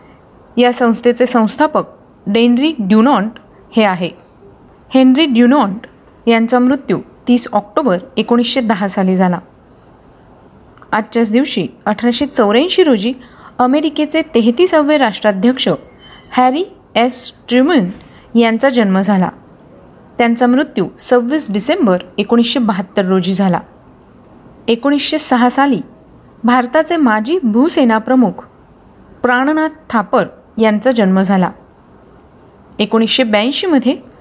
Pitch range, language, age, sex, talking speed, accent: 210-265 Hz, Marathi, 30-49, female, 85 wpm, native